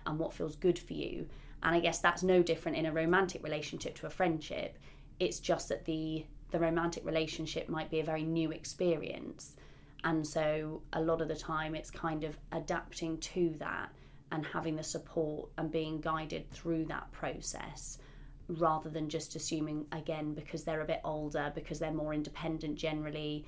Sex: female